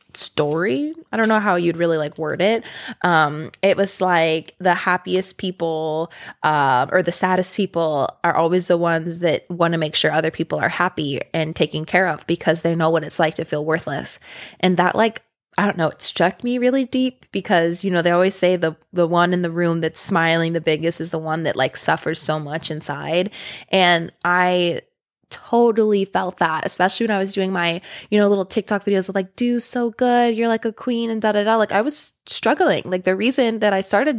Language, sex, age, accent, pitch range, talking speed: English, female, 20-39, American, 165-215 Hz, 215 wpm